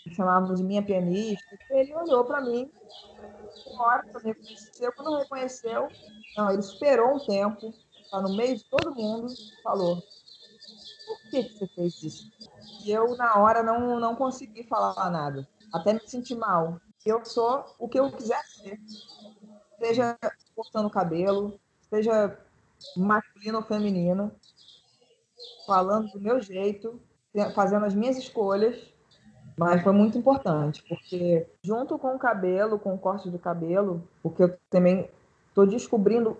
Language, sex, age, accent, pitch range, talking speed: Portuguese, female, 20-39, Brazilian, 180-230 Hz, 140 wpm